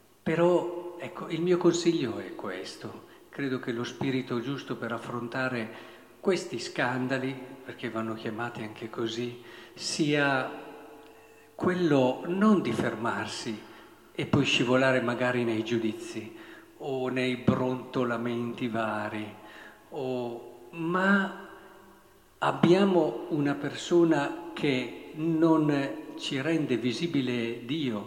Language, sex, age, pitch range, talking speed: Italian, male, 50-69, 120-160 Hz, 100 wpm